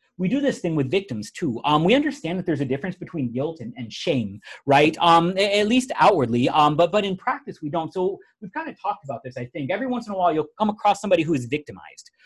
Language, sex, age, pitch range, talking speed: English, male, 30-49, 135-205 Hz, 260 wpm